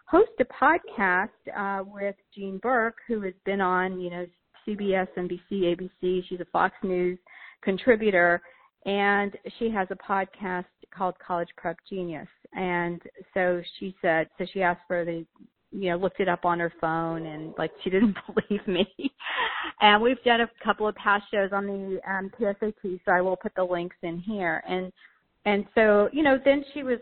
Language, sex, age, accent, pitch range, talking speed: English, female, 40-59, American, 185-230 Hz, 180 wpm